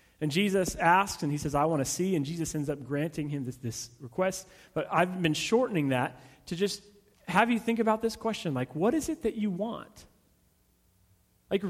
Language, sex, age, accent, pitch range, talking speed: English, male, 30-49, American, 150-225 Hz, 205 wpm